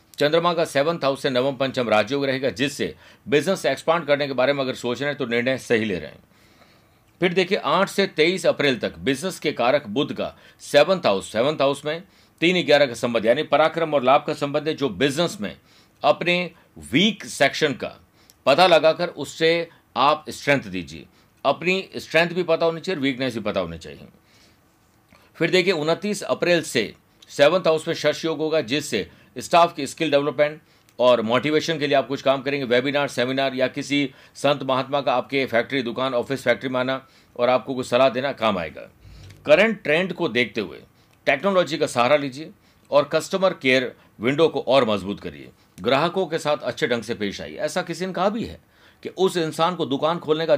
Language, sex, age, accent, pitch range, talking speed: Hindi, male, 50-69, native, 125-165 Hz, 190 wpm